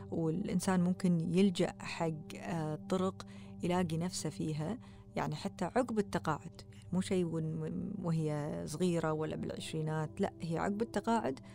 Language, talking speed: Arabic, 115 wpm